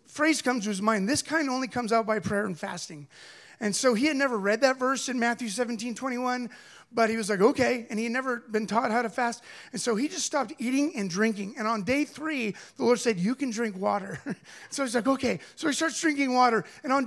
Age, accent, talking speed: 30-49, American, 245 wpm